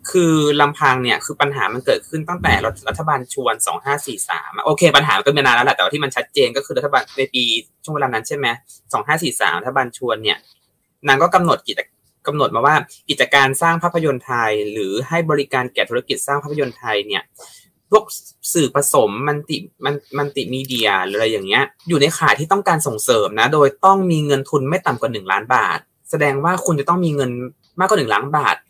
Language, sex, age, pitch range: Thai, male, 20-39, 130-170 Hz